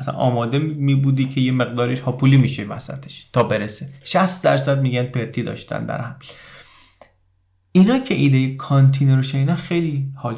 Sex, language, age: male, Persian, 30-49